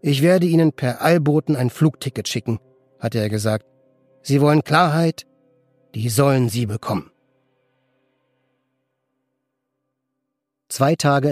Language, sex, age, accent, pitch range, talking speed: German, male, 40-59, German, 120-150 Hz, 105 wpm